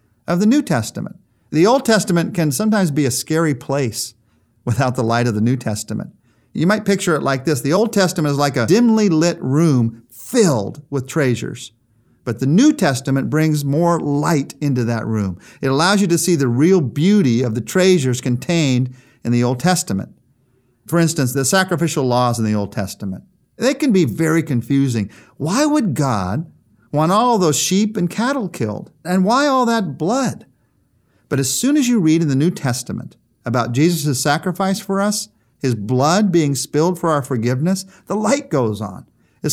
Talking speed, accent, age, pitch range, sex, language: 180 wpm, American, 50-69, 125-175 Hz, male, English